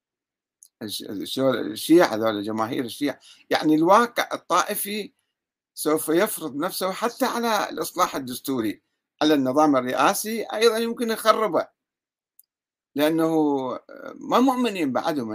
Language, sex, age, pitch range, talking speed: Arabic, male, 50-69, 145-210 Hz, 85 wpm